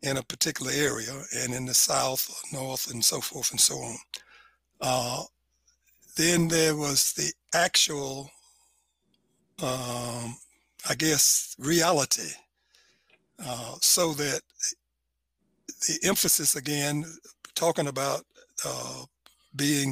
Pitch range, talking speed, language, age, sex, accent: 140-185 Hz, 105 wpm, English, 60-79, male, American